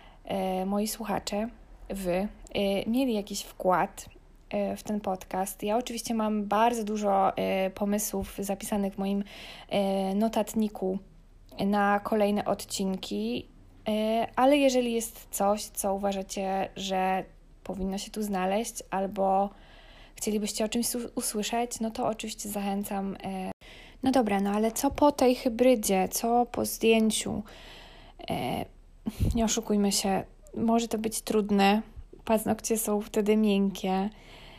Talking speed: 110 wpm